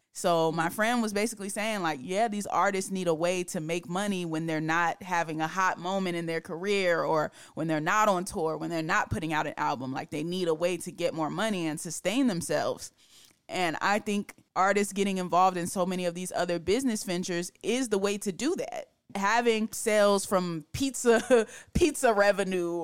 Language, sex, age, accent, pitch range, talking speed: English, female, 20-39, American, 165-205 Hz, 200 wpm